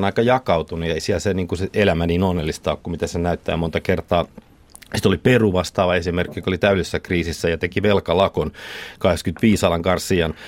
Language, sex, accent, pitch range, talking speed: Finnish, male, native, 85-100 Hz, 185 wpm